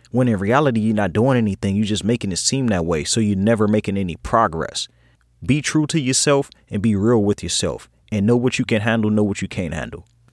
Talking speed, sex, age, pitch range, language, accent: 230 wpm, male, 30-49, 110-135 Hz, English, American